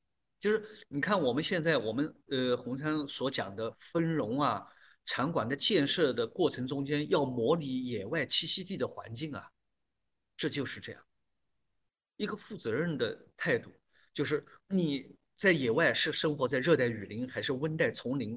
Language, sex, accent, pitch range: Chinese, male, native, 125-165 Hz